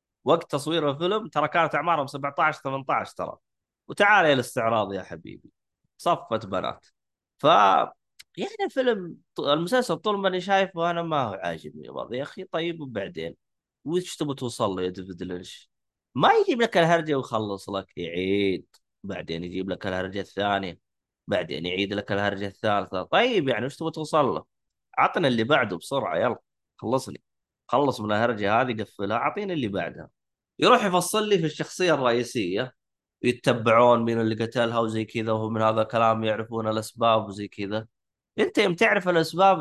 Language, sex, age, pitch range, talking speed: Arabic, male, 20-39, 100-160 Hz, 145 wpm